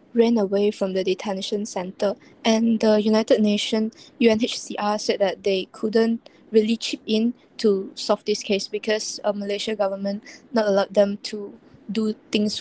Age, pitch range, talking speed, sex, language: 20-39, 200-240 Hz, 155 wpm, female, English